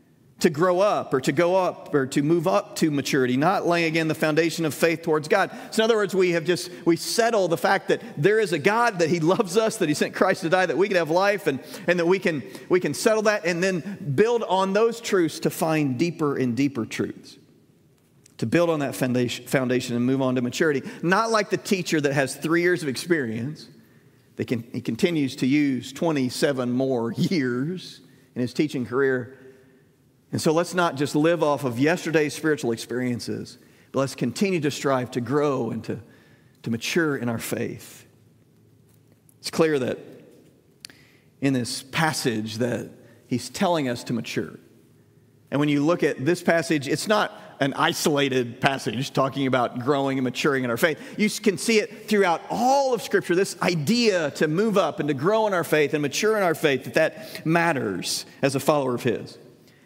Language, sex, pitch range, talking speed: English, male, 130-180 Hz, 195 wpm